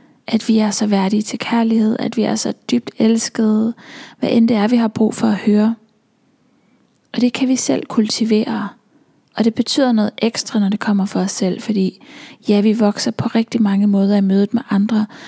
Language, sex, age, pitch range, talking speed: English, female, 20-39, 210-245 Hz, 205 wpm